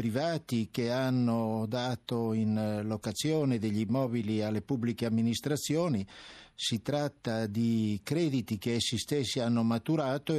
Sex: male